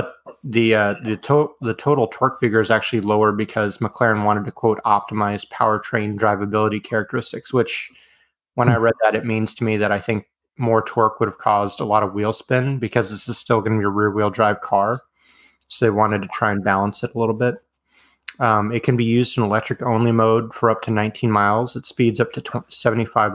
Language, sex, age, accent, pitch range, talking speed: English, male, 30-49, American, 105-120 Hz, 220 wpm